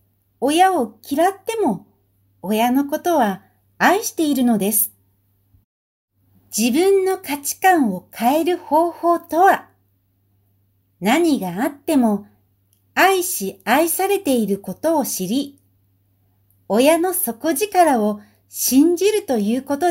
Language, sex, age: Japanese, female, 60-79